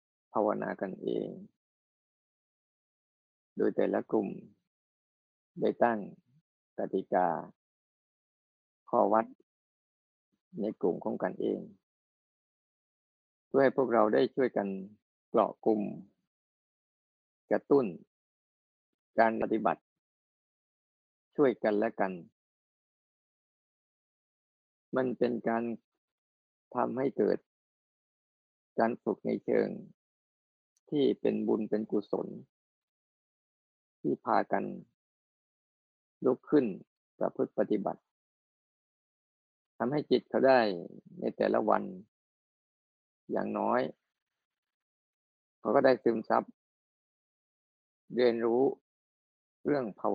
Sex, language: male, Thai